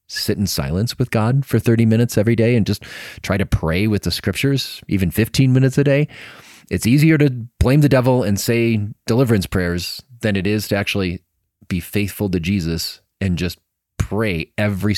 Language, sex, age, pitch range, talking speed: English, male, 30-49, 90-110 Hz, 185 wpm